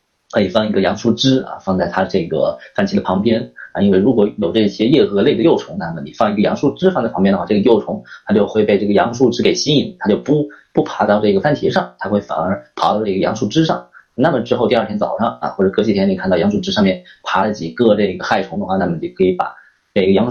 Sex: male